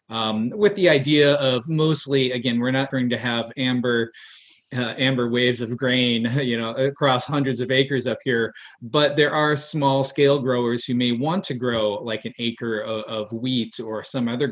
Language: English